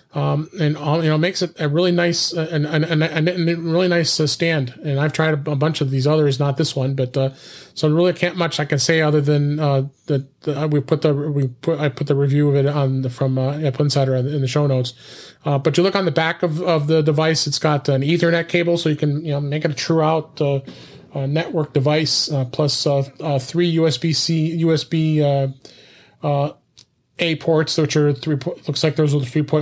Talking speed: 220 wpm